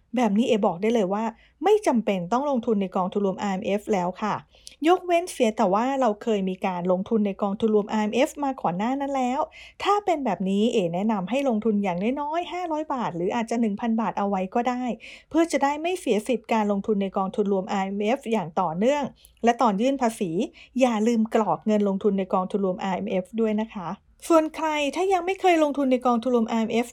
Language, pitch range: English, 200-285 Hz